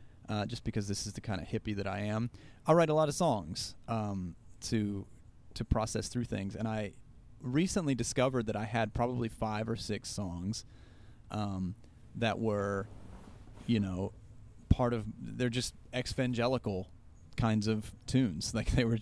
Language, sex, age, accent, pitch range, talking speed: English, male, 30-49, American, 105-120 Hz, 165 wpm